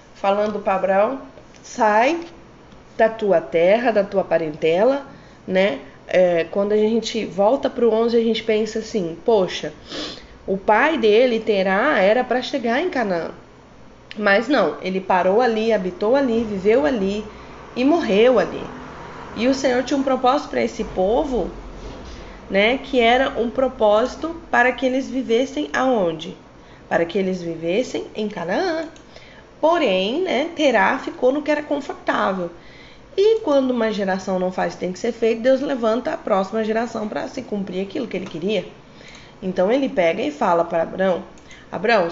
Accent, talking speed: Brazilian, 155 wpm